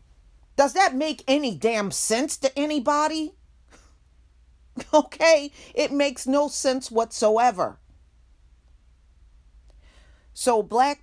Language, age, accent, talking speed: English, 40-59, American, 85 wpm